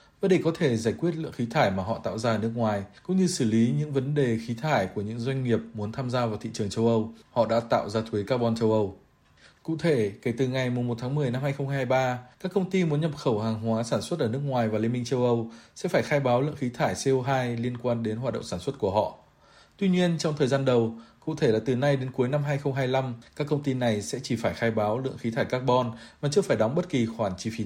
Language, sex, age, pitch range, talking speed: Vietnamese, male, 20-39, 115-140 Hz, 275 wpm